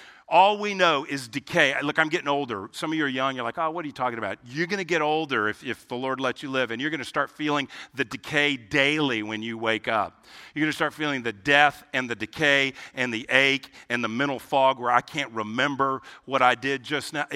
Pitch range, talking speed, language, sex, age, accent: 135-185 Hz, 250 wpm, English, male, 50-69, American